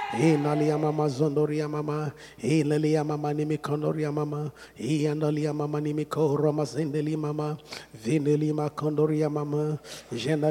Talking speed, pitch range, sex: 95 wpm, 150-190 Hz, male